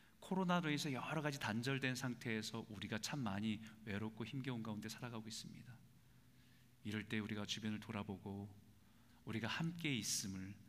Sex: male